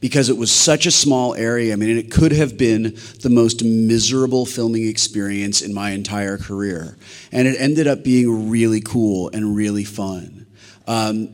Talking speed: 175 wpm